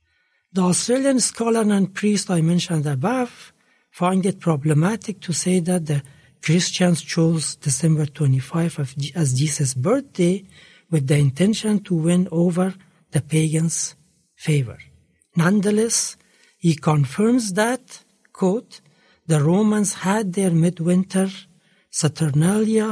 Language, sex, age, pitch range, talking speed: Arabic, male, 60-79, 150-195 Hz, 110 wpm